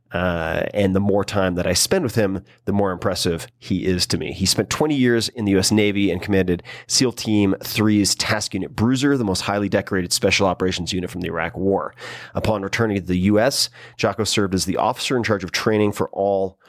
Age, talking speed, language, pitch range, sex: 30-49, 215 wpm, English, 95-115 Hz, male